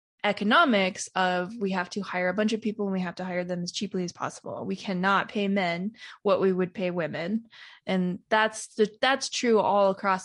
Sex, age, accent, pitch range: female, 20-39, American, 180-210 Hz